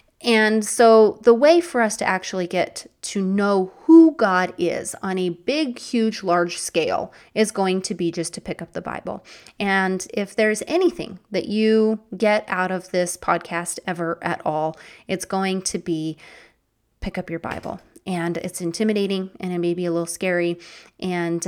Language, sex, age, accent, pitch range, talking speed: English, female, 30-49, American, 180-230 Hz, 175 wpm